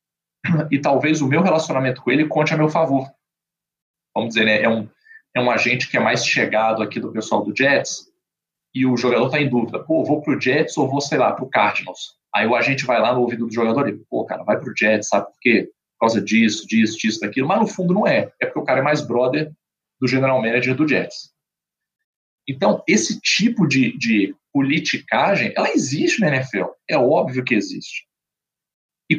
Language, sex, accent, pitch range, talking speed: Portuguese, male, Brazilian, 125-170 Hz, 210 wpm